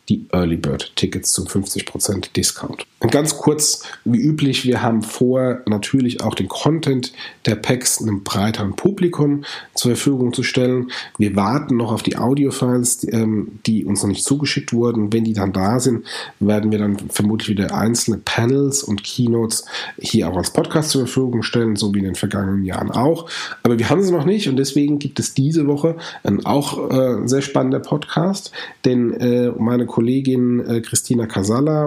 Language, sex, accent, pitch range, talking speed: German, male, German, 110-135 Hz, 170 wpm